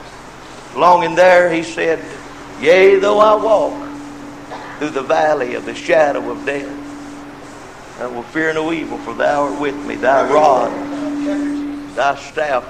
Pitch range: 180-285 Hz